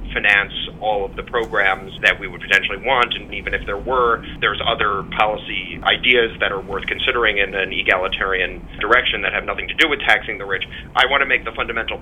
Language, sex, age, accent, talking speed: English, male, 30-49, American, 210 wpm